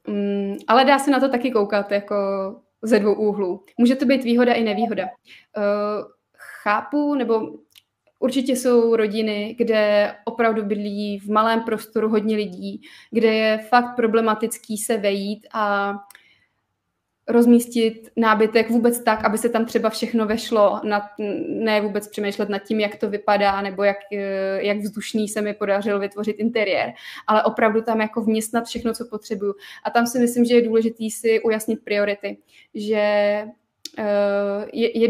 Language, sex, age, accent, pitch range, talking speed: Czech, female, 20-39, native, 210-235 Hz, 145 wpm